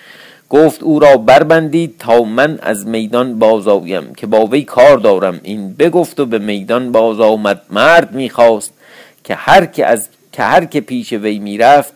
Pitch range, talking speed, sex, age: 110-155 Hz, 160 wpm, male, 50-69